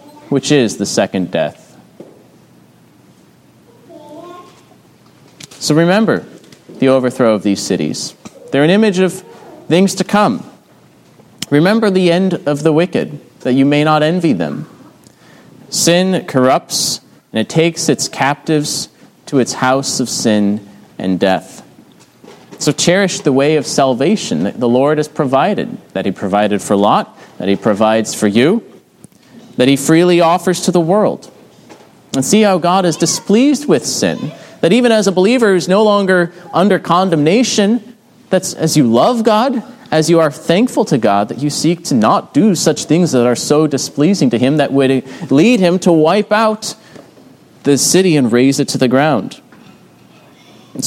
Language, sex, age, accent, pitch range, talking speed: English, male, 30-49, American, 135-190 Hz, 155 wpm